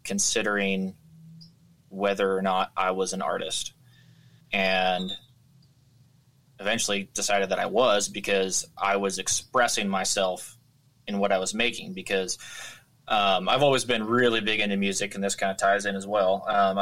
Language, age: English, 20-39